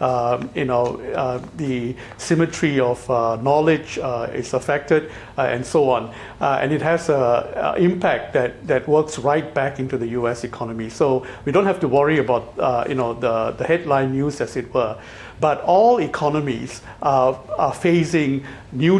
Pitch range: 125-155 Hz